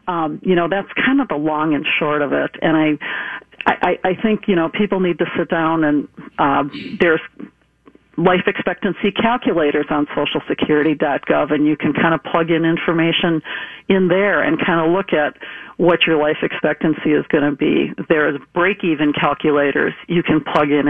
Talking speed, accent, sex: 180 wpm, American, female